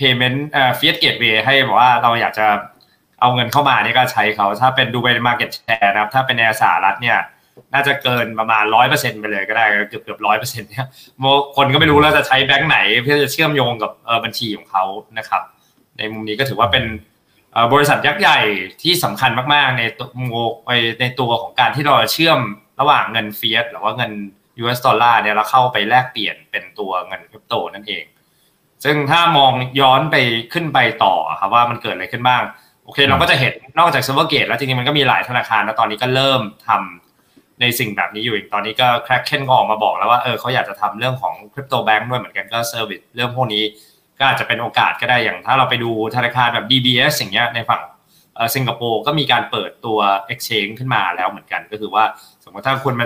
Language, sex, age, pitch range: Thai, male, 20-39, 110-135 Hz